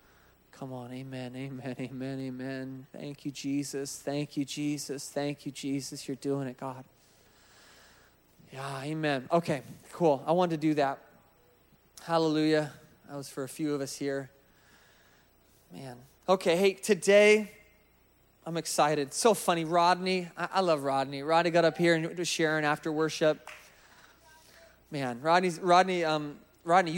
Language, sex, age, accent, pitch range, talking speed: English, male, 20-39, American, 145-185 Hz, 140 wpm